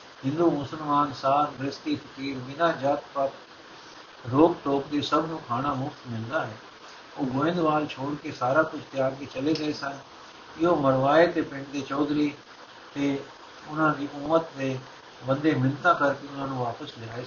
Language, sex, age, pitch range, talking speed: Punjabi, male, 60-79, 135-155 Hz, 155 wpm